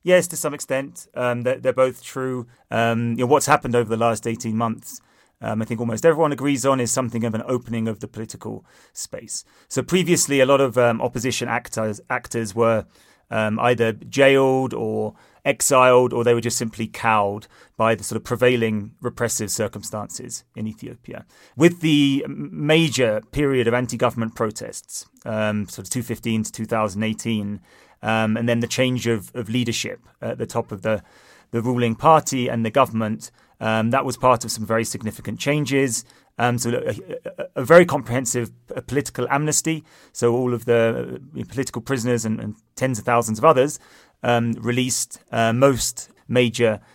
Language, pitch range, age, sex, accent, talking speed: English, 115-130 Hz, 30-49, male, British, 165 wpm